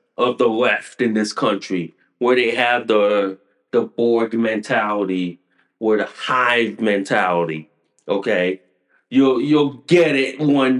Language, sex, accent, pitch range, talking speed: English, male, American, 130-195 Hz, 130 wpm